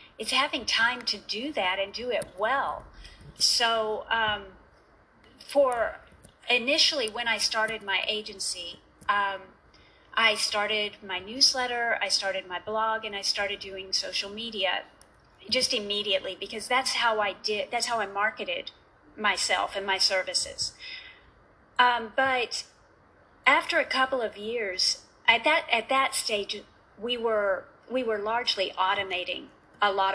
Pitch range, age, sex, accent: 200-245 Hz, 40-59, female, American